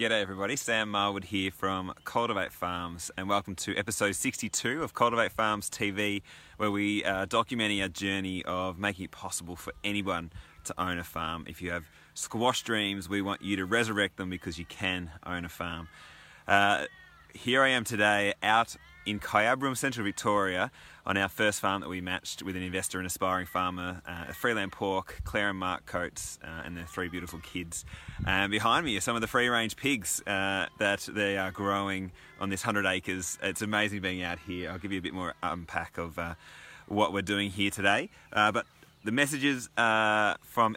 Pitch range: 90-105 Hz